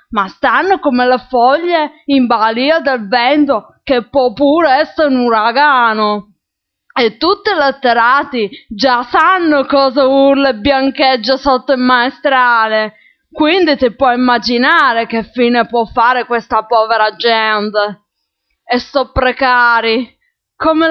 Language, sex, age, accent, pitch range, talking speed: Italian, female, 20-39, native, 235-280 Hz, 125 wpm